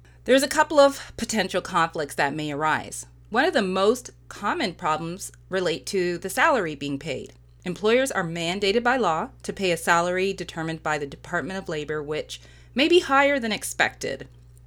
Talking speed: 170 wpm